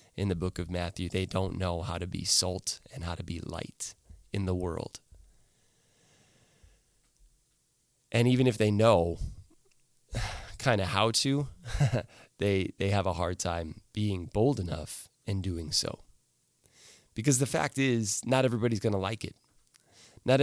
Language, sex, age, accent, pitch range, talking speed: English, male, 20-39, American, 100-130 Hz, 150 wpm